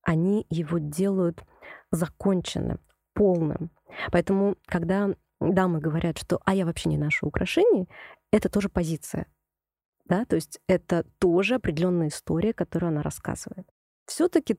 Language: Russian